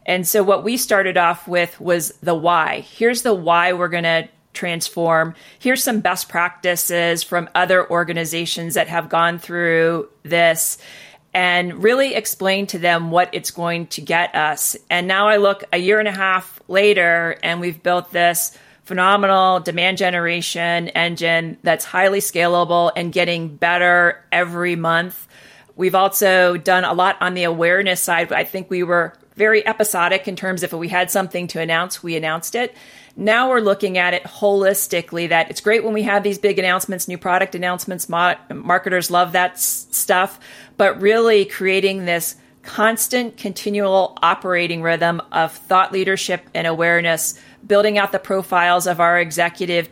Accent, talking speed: American, 165 wpm